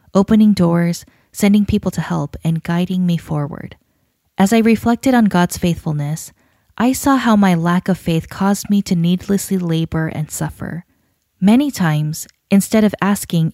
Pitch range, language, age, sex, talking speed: 160-205 Hz, English, 20-39, female, 155 wpm